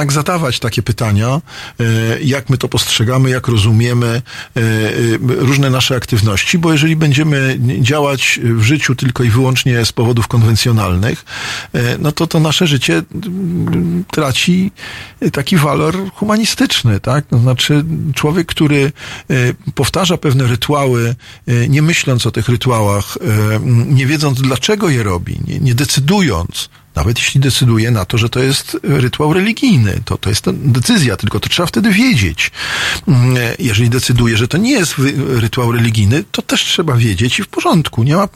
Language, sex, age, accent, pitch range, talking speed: Polish, male, 50-69, native, 120-155 Hz, 140 wpm